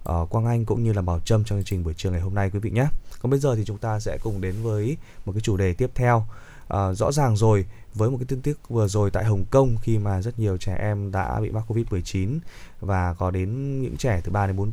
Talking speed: 275 wpm